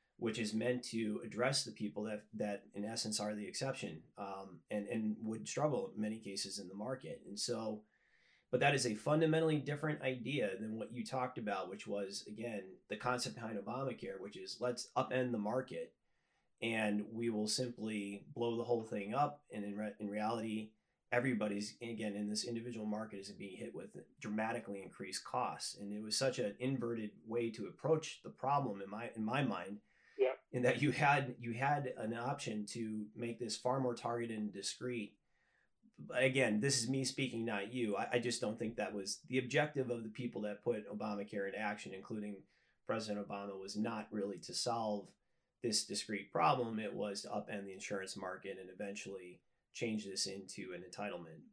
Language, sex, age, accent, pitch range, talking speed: English, male, 30-49, American, 105-125 Hz, 185 wpm